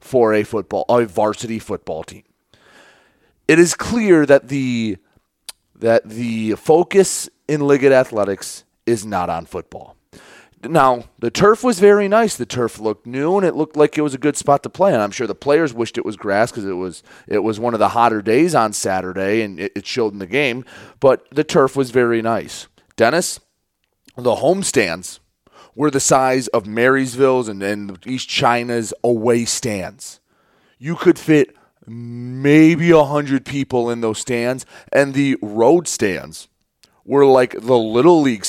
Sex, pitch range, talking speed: male, 110-145 Hz, 170 wpm